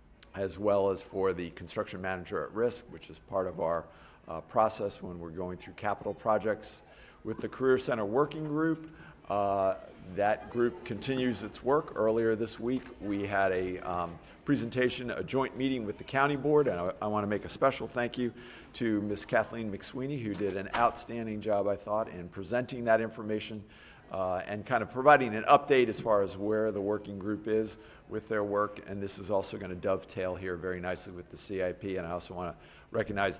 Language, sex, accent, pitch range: English, male, American, 95-115 Hz